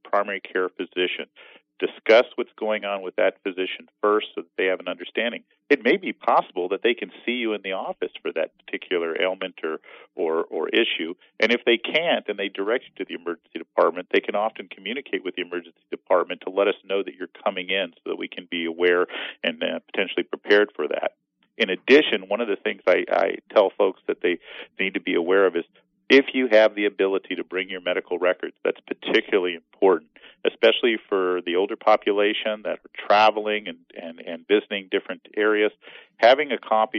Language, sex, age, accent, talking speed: English, male, 50-69, American, 200 wpm